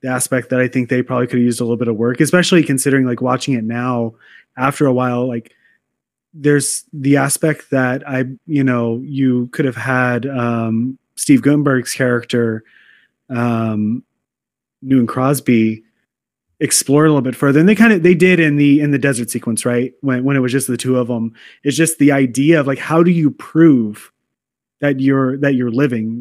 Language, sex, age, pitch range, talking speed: English, male, 30-49, 125-145 Hz, 195 wpm